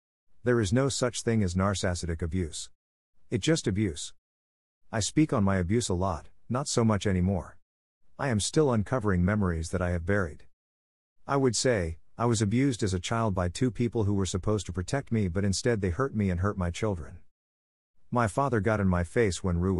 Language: English